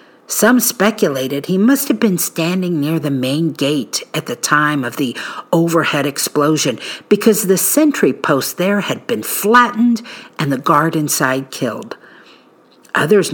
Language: English